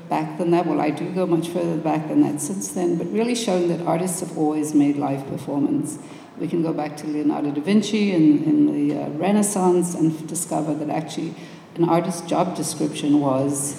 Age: 60-79